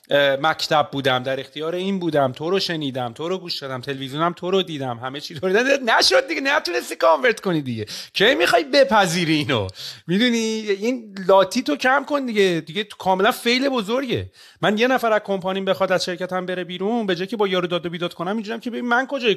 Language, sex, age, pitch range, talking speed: Persian, male, 40-59, 140-200 Hz, 200 wpm